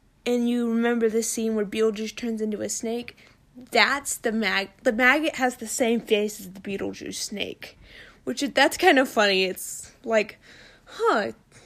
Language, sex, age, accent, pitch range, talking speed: English, female, 20-39, American, 215-275 Hz, 165 wpm